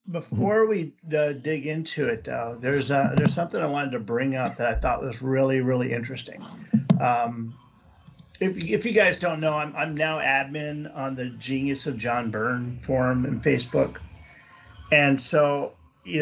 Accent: American